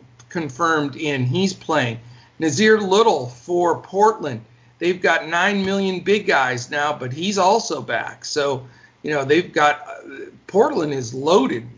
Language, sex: English, male